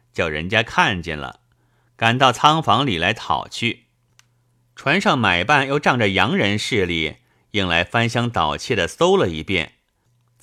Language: Chinese